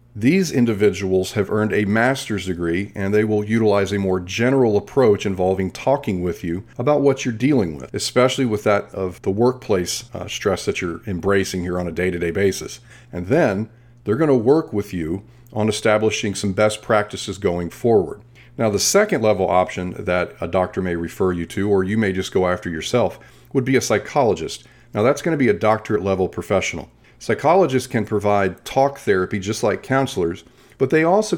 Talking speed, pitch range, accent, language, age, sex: 185 wpm, 95-120 Hz, American, English, 40-59, male